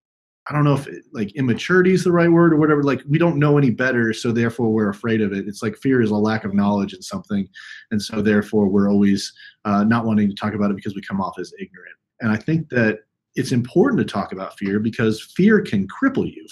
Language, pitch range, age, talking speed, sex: English, 105-140 Hz, 30-49, 245 wpm, male